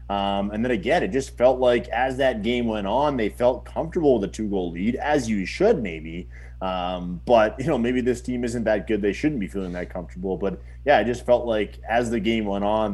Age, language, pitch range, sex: 30-49, English, 90-115 Hz, male